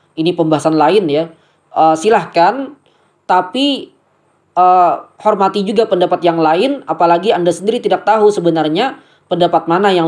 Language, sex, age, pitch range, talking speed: Indonesian, female, 20-39, 155-205 Hz, 130 wpm